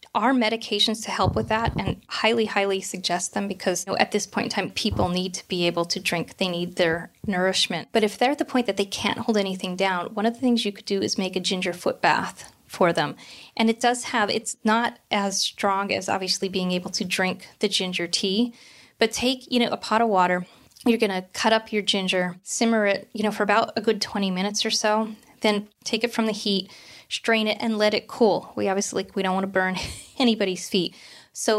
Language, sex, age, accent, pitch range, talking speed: English, female, 20-39, American, 185-220 Hz, 230 wpm